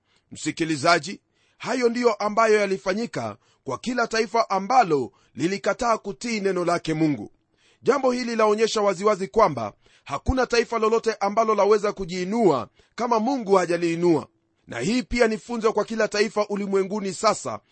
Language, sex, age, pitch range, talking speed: Swahili, male, 40-59, 180-235 Hz, 125 wpm